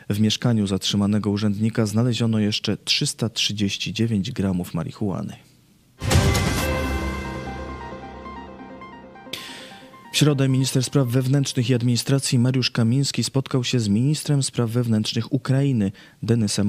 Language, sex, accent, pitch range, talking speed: Polish, male, native, 105-130 Hz, 95 wpm